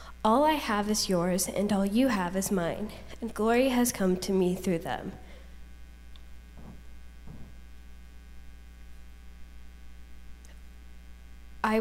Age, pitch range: 10-29, 165-225 Hz